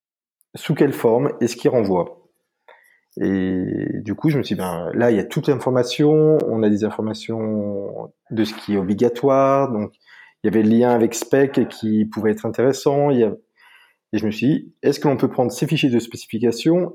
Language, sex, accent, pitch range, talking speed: French, male, French, 105-135 Hz, 195 wpm